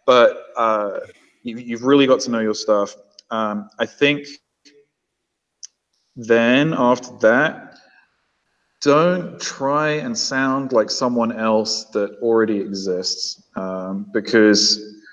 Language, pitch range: English, 105-135 Hz